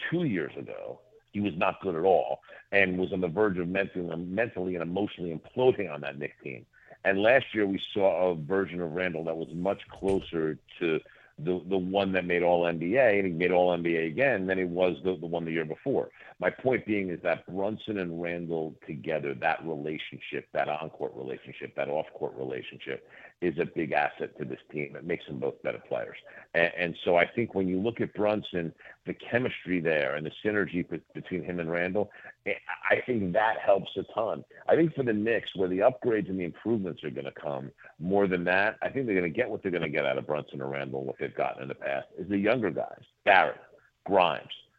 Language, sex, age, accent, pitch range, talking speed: English, male, 50-69, American, 85-105 Hz, 215 wpm